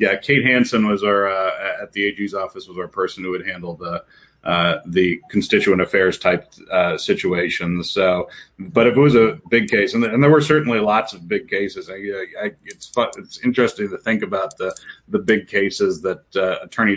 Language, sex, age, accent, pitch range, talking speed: English, male, 40-59, American, 95-120 Hz, 210 wpm